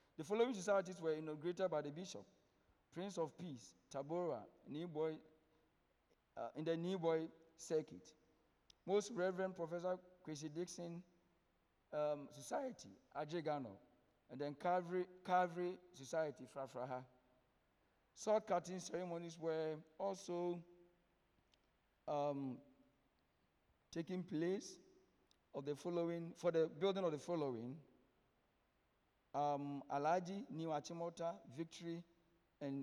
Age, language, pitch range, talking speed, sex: 50-69, English, 140-175 Hz, 100 wpm, male